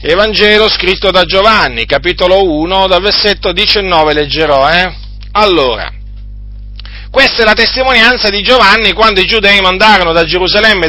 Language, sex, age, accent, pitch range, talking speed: Italian, male, 40-59, native, 140-210 Hz, 130 wpm